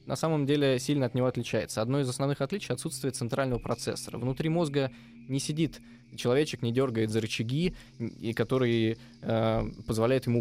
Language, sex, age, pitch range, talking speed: Russian, male, 20-39, 115-145 Hz, 155 wpm